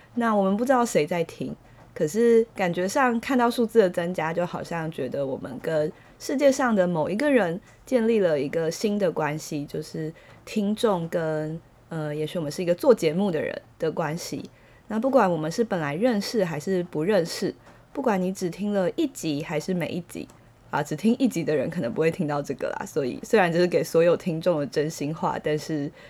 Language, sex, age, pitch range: Chinese, female, 20-39, 160-220 Hz